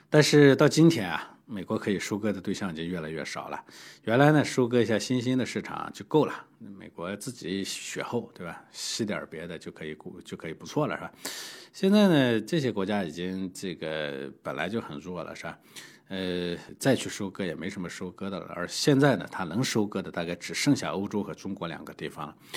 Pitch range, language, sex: 90-130 Hz, Chinese, male